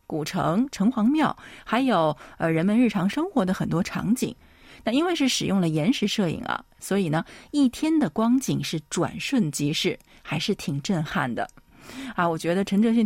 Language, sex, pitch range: Chinese, female, 170-235 Hz